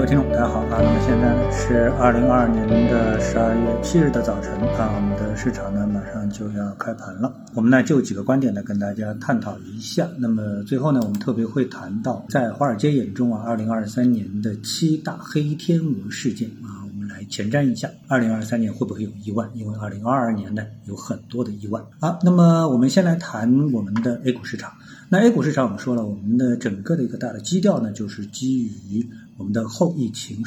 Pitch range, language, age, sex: 110-150 Hz, Chinese, 50-69, male